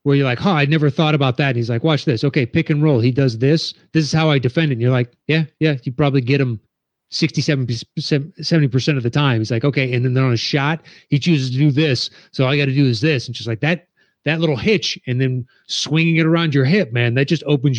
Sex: male